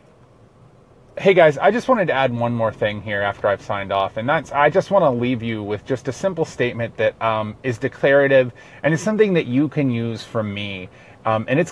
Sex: male